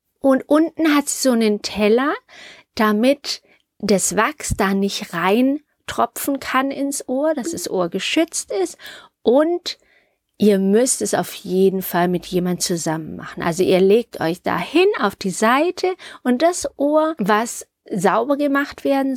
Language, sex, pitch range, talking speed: German, female, 195-300 Hz, 145 wpm